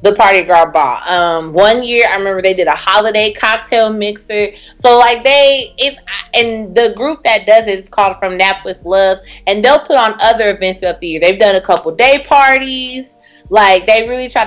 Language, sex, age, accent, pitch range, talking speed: English, female, 20-39, American, 175-245 Hz, 205 wpm